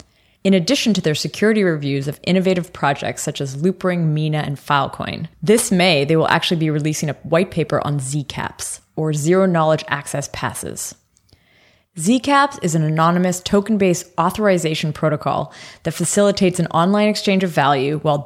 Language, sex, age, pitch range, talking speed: English, female, 20-39, 150-190 Hz, 160 wpm